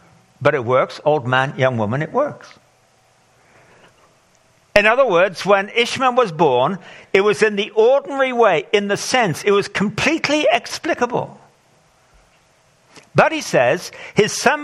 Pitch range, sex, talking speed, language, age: 140-210 Hz, male, 140 wpm, English, 60-79